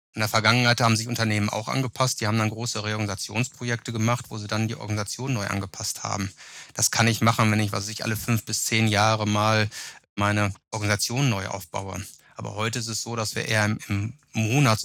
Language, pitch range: German, 110-125 Hz